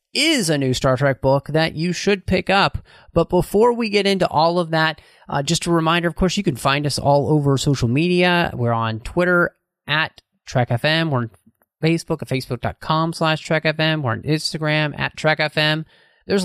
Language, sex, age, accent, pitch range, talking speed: English, male, 30-49, American, 130-175 Hz, 195 wpm